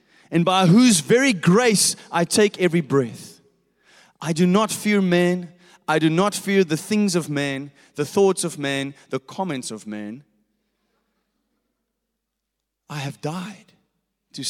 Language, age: English, 30-49